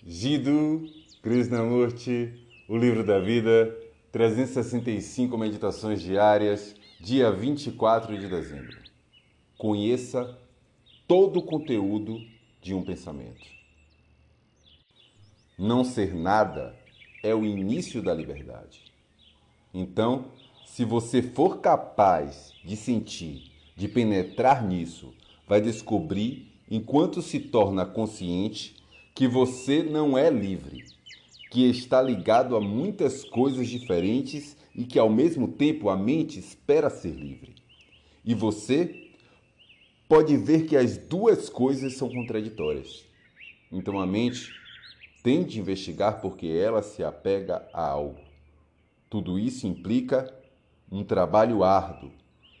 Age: 40-59